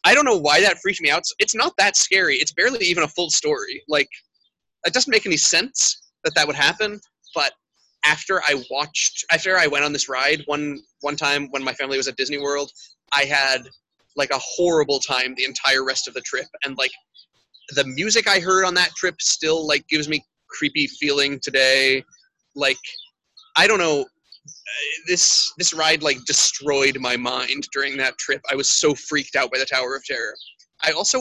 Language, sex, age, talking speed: English, male, 20-39, 200 wpm